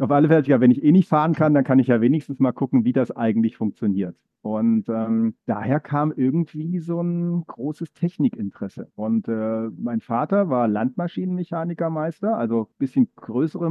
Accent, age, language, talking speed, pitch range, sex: German, 40-59, German, 175 wpm, 125-165 Hz, male